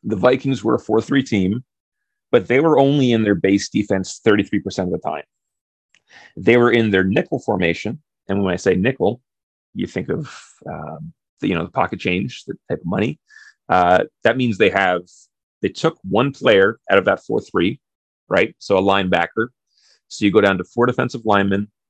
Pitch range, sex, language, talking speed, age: 90-115 Hz, male, English, 180 wpm, 30-49